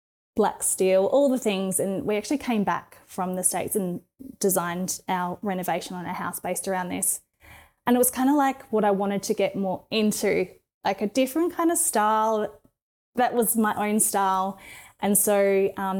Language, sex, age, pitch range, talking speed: English, female, 20-39, 185-210 Hz, 190 wpm